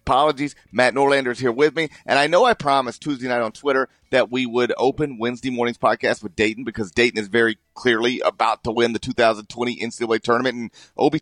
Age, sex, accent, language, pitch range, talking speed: 40-59, male, American, English, 120-160 Hz, 210 wpm